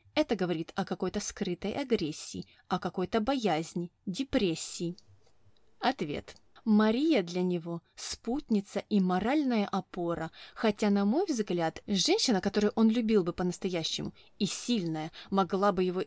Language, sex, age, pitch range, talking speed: Russian, female, 20-39, 175-230 Hz, 125 wpm